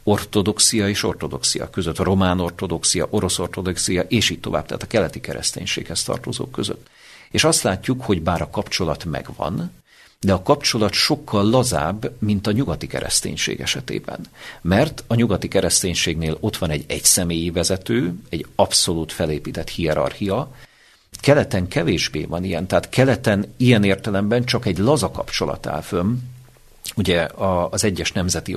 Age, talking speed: 50-69, 140 wpm